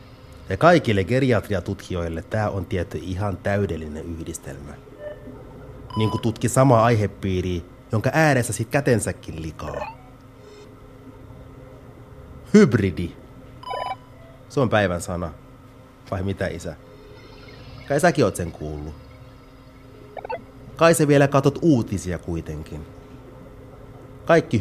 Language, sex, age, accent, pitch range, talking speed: Finnish, male, 30-49, native, 95-130 Hz, 95 wpm